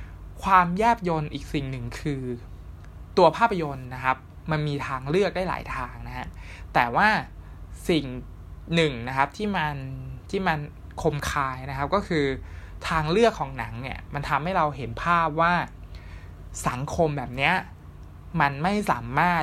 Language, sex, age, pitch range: Thai, male, 20-39, 115-160 Hz